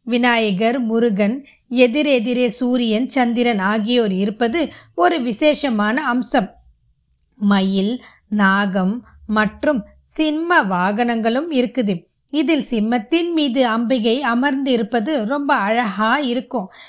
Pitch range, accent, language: 220-295 Hz, native, Tamil